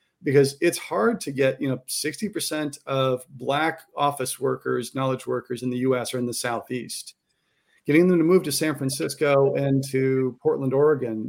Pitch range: 125-150 Hz